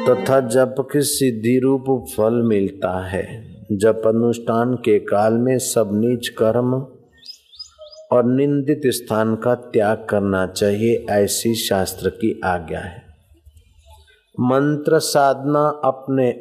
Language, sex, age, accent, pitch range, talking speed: Hindi, male, 50-69, native, 115-140 Hz, 110 wpm